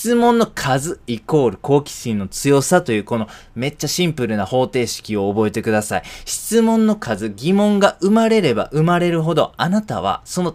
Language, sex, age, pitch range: Japanese, male, 20-39, 110-150 Hz